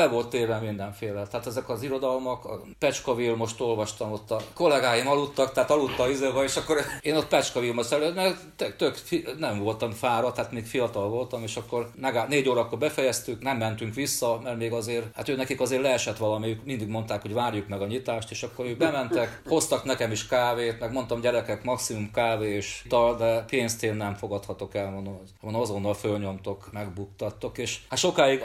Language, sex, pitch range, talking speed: Hungarian, male, 110-130 Hz, 180 wpm